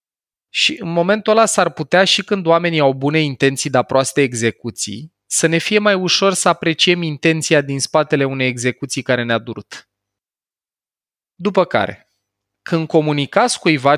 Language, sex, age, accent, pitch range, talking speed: Romanian, male, 20-39, native, 115-150 Hz, 150 wpm